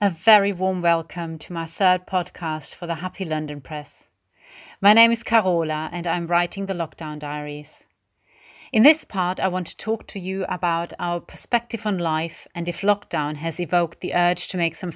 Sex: female